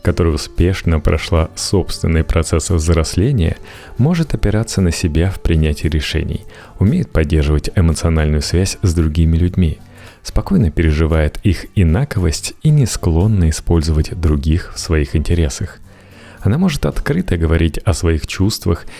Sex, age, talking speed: male, 30-49, 125 wpm